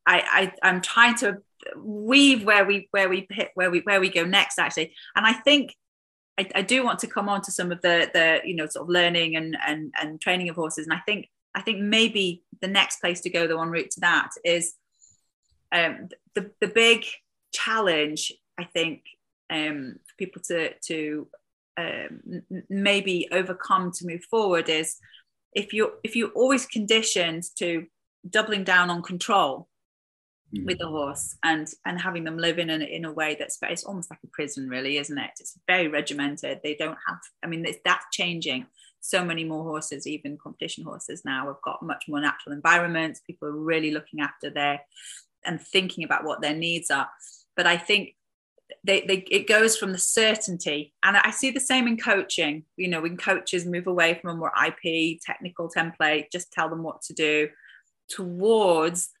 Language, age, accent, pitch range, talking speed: English, 30-49, British, 160-200 Hz, 190 wpm